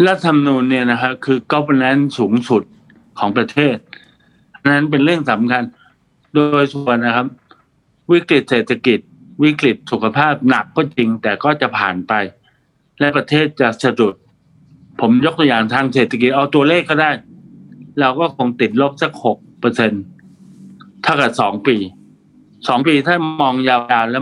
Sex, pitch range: male, 120-150 Hz